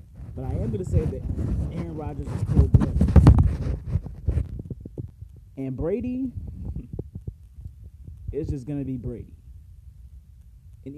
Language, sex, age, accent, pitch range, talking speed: English, male, 30-49, American, 80-105 Hz, 115 wpm